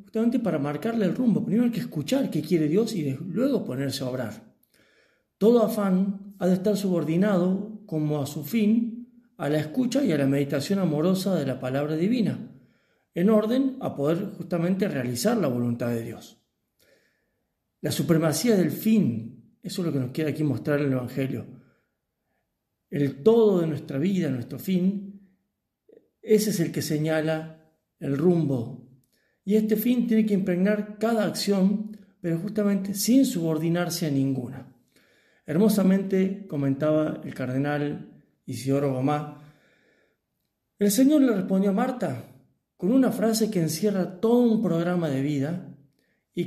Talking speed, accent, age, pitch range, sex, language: 145 wpm, Argentinian, 40-59, 145-210 Hz, male, Spanish